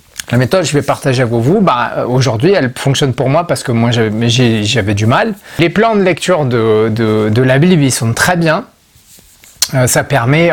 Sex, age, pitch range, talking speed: male, 30-49, 115-150 Hz, 200 wpm